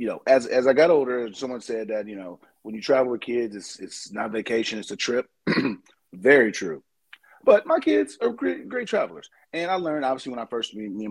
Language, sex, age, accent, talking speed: English, male, 30-49, American, 225 wpm